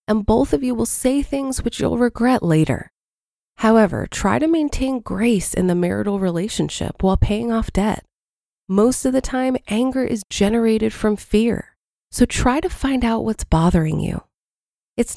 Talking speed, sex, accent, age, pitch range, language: 165 wpm, female, American, 20-39, 190-245 Hz, English